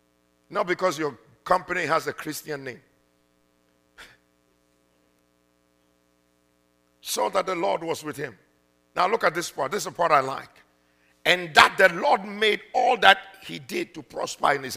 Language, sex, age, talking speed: English, male, 50-69, 160 wpm